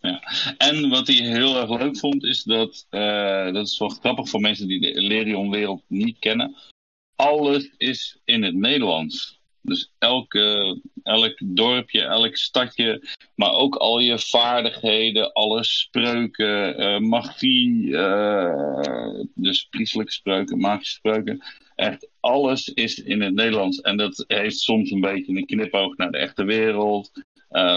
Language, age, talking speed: Dutch, 50-69, 145 wpm